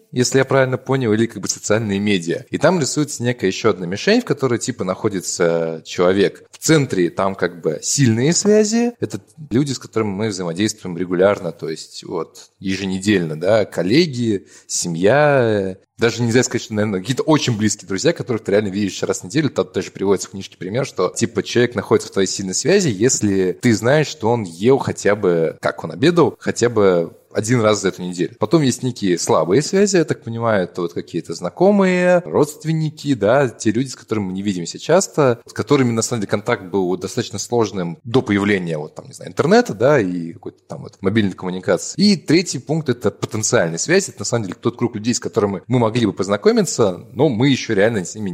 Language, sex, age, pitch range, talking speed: Russian, male, 20-39, 95-135 Hz, 200 wpm